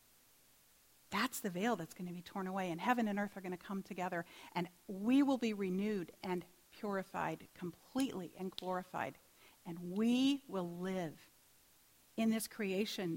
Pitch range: 185-245 Hz